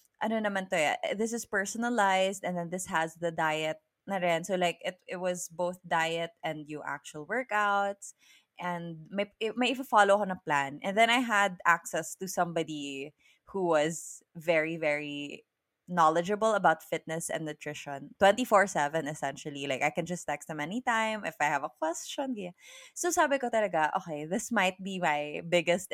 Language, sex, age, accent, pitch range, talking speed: English, female, 20-39, Filipino, 160-210 Hz, 170 wpm